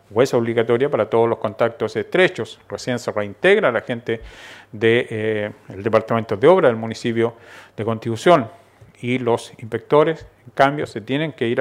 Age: 40-59